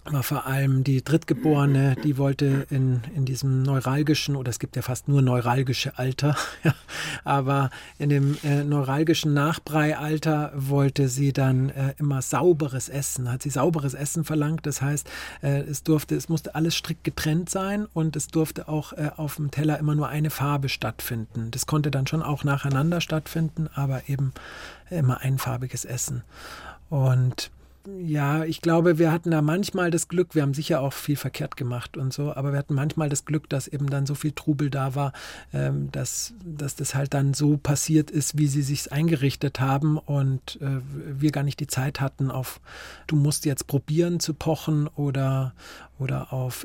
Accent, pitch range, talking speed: German, 135-155 Hz, 175 wpm